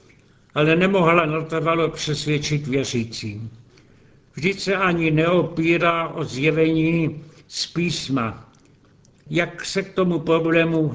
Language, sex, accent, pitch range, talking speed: Czech, male, native, 140-175 Hz, 100 wpm